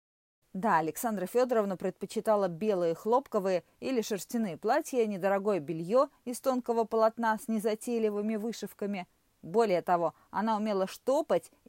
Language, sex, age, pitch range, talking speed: Russian, female, 30-49, 175-230 Hz, 115 wpm